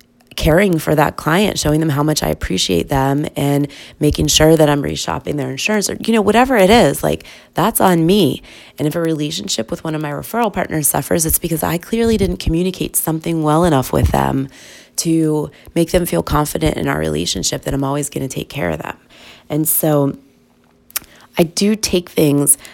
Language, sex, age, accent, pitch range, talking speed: English, female, 20-39, American, 135-165 Hz, 195 wpm